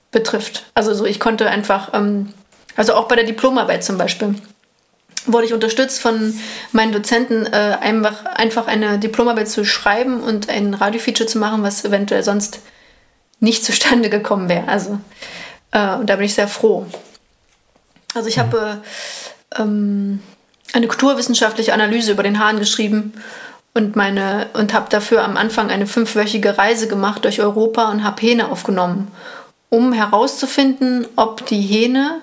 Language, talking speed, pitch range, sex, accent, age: German, 150 wpm, 205-235 Hz, female, German, 30-49